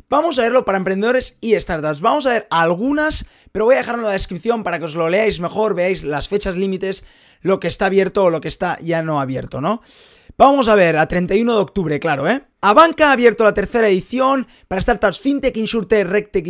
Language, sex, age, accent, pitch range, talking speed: Spanish, male, 20-39, Spanish, 180-235 Hz, 220 wpm